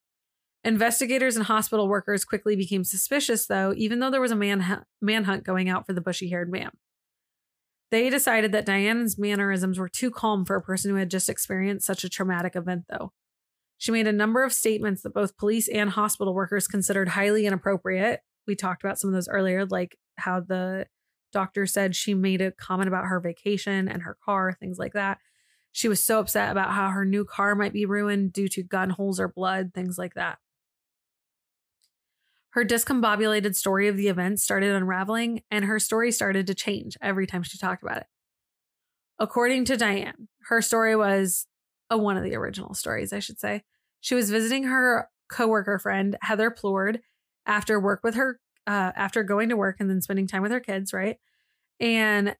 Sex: female